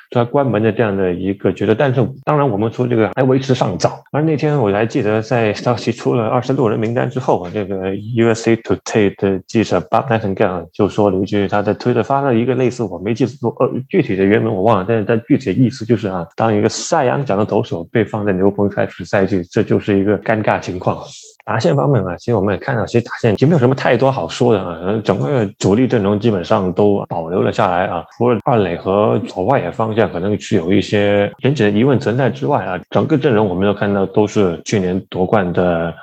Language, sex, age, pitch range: Chinese, male, 20-39, 95-115 Hz